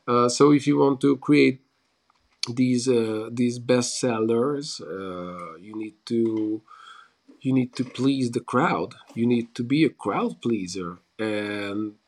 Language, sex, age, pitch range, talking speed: English, male, 40-59, 110-130 Hz, 145 wpm